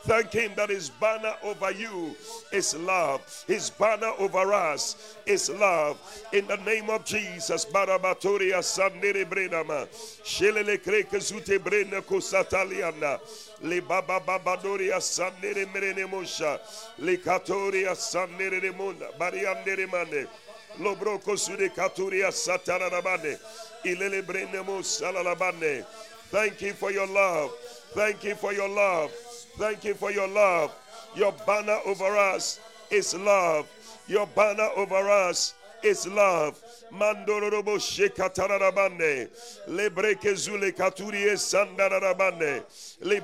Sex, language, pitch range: male, English, 195-225 Hz